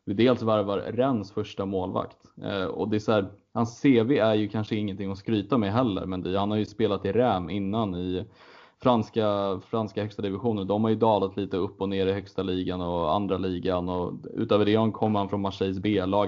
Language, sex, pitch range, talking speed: Swedish, male, 95-110 Hz, 215 wpm